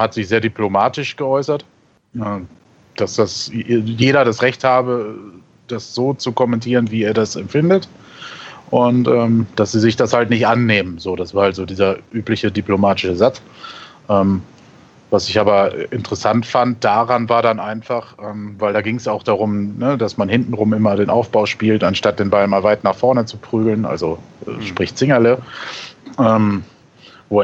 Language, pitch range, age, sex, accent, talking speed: German, 105-120 Hz, 30-49, male, German, 155 wpm